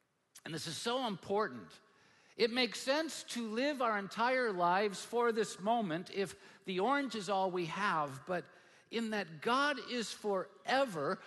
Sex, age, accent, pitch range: male, 50-69, American, 135-225 Hz